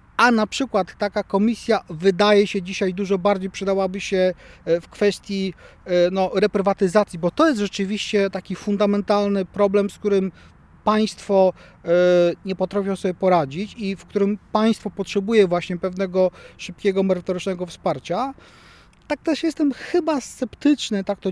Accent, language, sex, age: native, Polish, male, 40-59